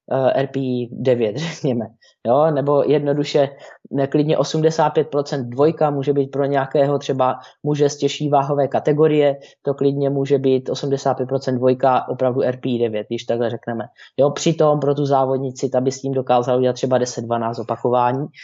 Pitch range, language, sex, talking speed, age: 135-155 Hz, Slovak, male, 135 wpm, 20-39